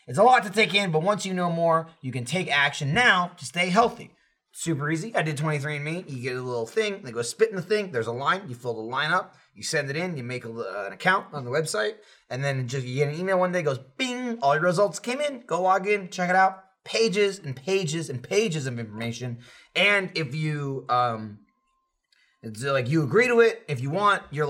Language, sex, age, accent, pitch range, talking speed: English, male, 30-49, American, 140-190 Hz, 245 wpm